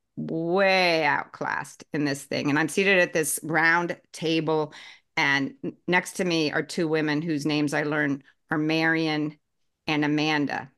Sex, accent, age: female, American, 40-59